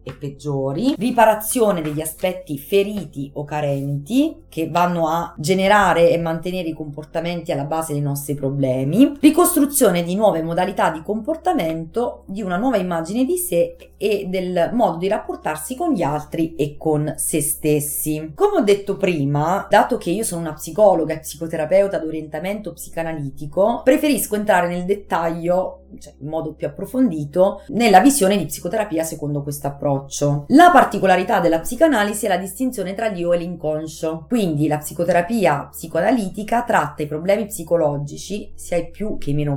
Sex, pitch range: female, 150-210 Hz